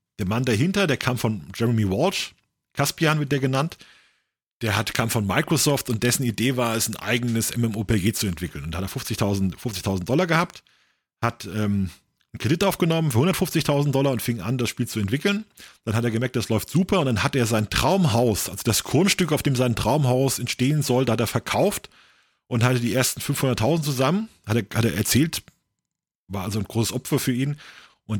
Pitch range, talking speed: 110-140 Hz, 200 wpm